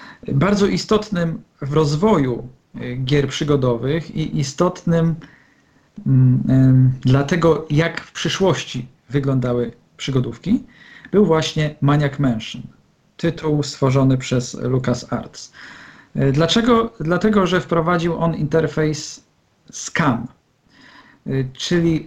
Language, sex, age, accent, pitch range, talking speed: Polish, male, 50-69, native, 140-175 Hz, 90 wpm